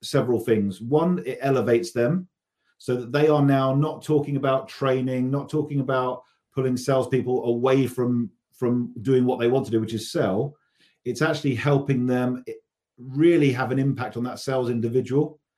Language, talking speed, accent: English, 170 wpm, British